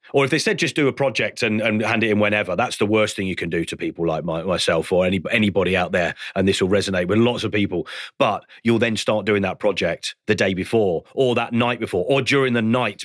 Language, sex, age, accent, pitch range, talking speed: English, male, 40-59, British, 110-140 Hz, 260 wpm